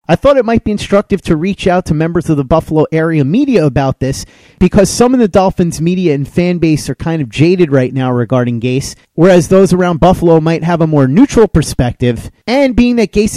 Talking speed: 220 wpm